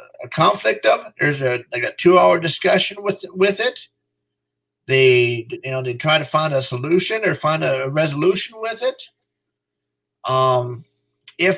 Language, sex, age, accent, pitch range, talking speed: English, male, 40-59, American, 125-165 Hz, 155 wpm